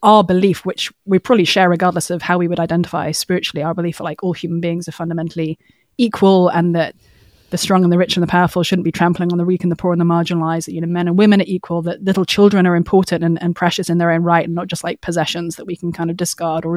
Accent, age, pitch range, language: British, 20-39, 170-205 Hz, English